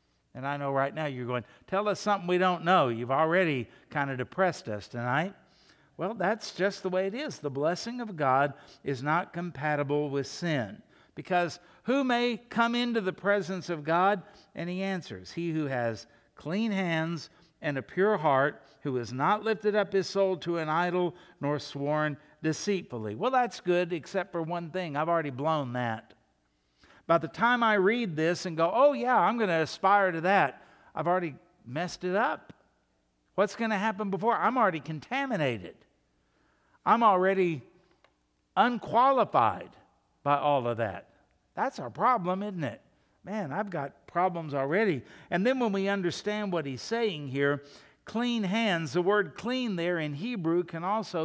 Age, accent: 60-79, American